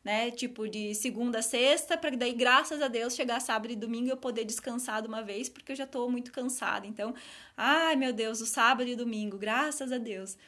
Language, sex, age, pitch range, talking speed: Portuguese, female, 20-39, 220-285 Hz, 225 wpm